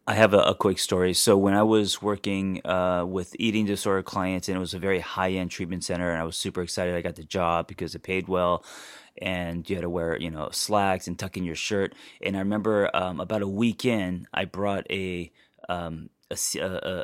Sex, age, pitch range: male, 30-49, 90-105 Hz